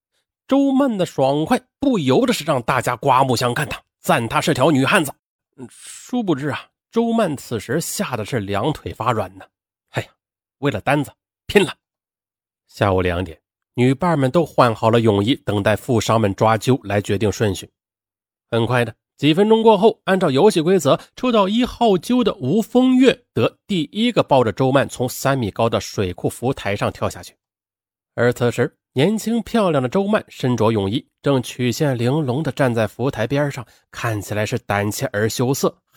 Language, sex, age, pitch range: Chinese, male, 30-49, 105-155 Hz